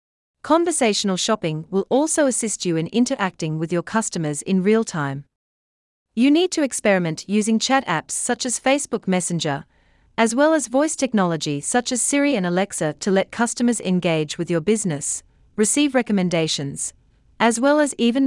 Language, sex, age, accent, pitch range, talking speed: English, female, 40-59, Australian, 165-245 Hz, 160 wpm